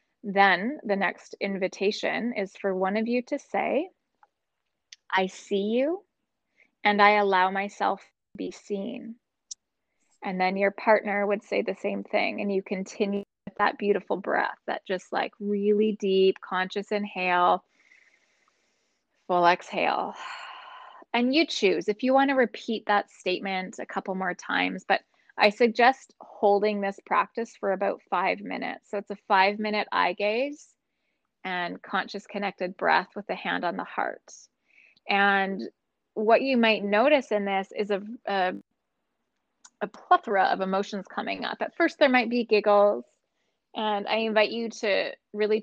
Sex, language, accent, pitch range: female, English, American, 195-235 Hz